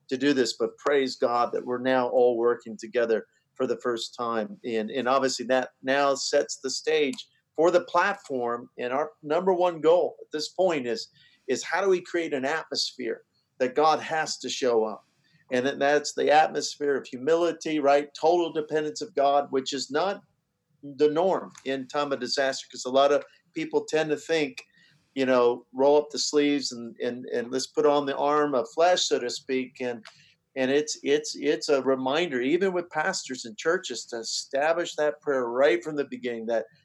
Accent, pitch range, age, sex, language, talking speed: American, 125-155 Hz, 50-69, male, English, 190 wpm